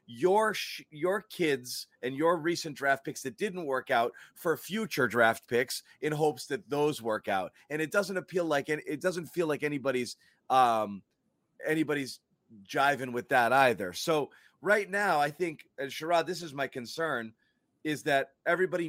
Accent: American